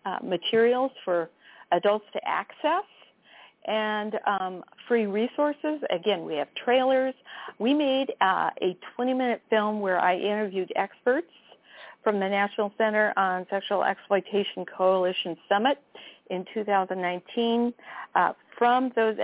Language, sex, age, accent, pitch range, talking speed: English, female, 50-69, American, 190-240 Hz, 120 wpm